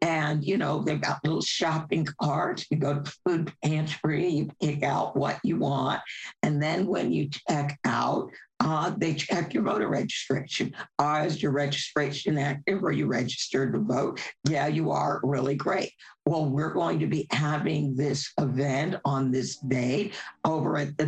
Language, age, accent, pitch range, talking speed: English, 50-69, American, 135-170 Hz, 175 wpm